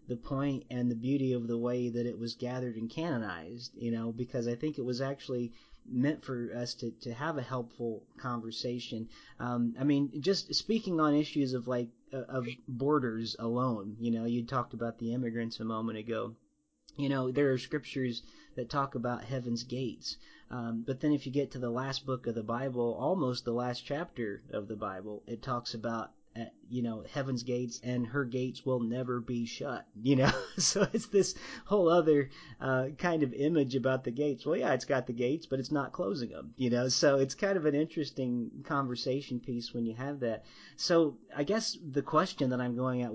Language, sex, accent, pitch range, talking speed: English, male, American, 120-140 Hz, 205 wpm